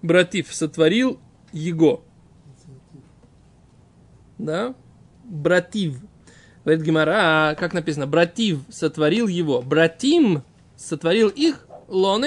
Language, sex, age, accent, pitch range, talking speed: Russian, male, 20-39, native, 155-210 Hz, 80 wpm